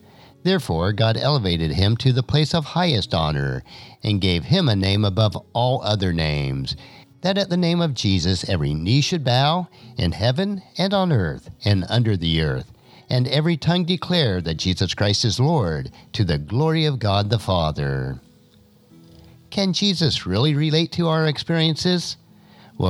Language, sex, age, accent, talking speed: English, male, 50-69, American, 160 wpm